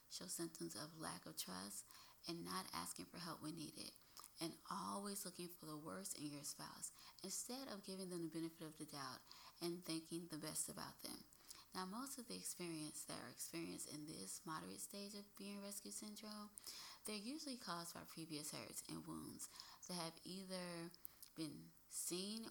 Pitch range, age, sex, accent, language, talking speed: 150-200 Hz, 20-39, female, American, English, 175 wpm